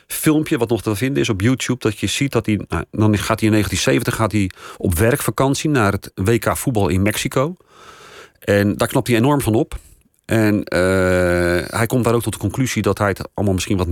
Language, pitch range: Dutch, 100-120 Hz